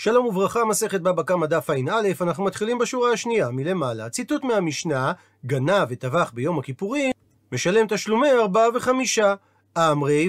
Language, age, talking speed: Hebrew, 40-59, 140 wpm